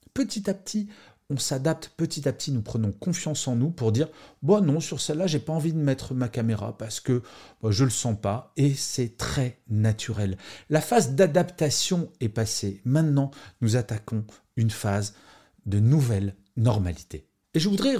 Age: 40-59